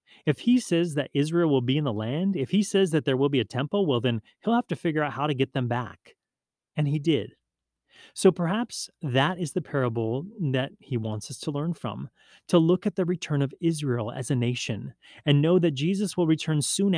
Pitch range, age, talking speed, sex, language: 120-160 Hz, 30-49, 225 wpm, male, English